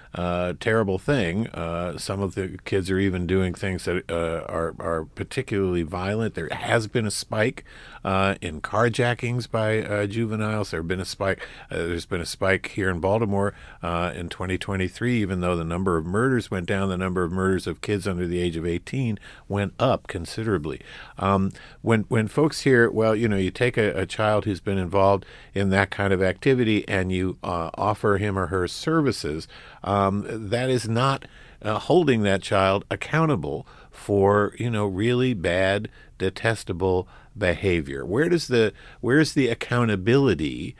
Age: 50-69